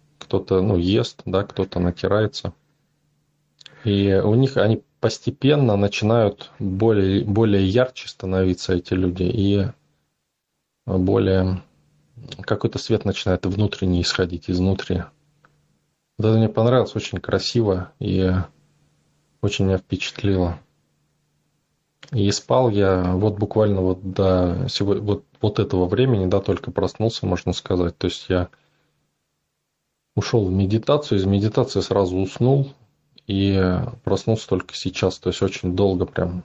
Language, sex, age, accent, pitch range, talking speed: Russian, male, 20-39, native, 95-120 Hz, 110 wpm